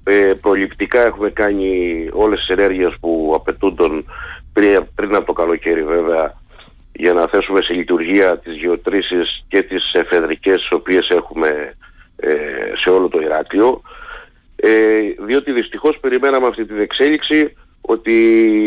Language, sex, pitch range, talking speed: Greek, male, 100-135 Hz, 130 wpm